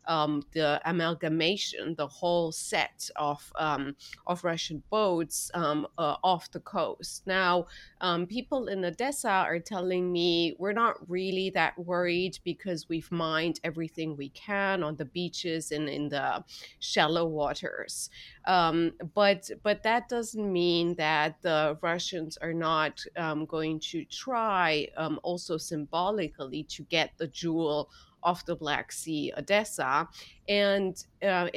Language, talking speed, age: English, 135 wpm, 30-49